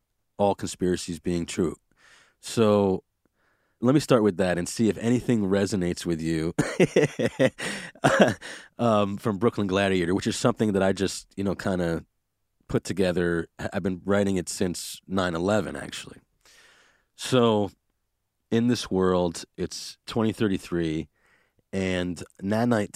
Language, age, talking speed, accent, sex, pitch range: English, 30-49, 125 wpm, American, male, 85-105 Hz